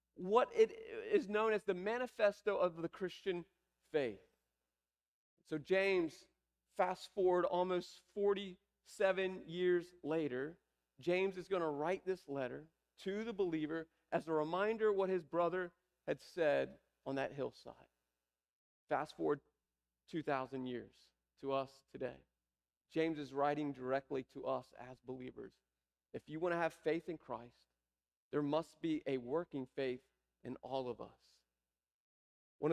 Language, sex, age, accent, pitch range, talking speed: English, male, 40-59, American, 130-195 Hz, 140 wpm